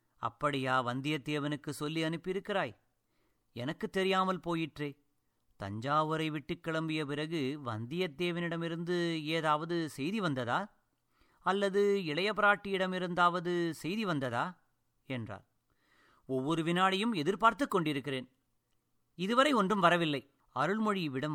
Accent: native